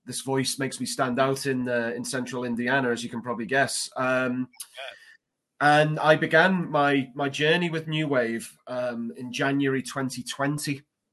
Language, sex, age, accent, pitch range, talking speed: English, male, 30-49, British, 125-155 Hz, 160 wpm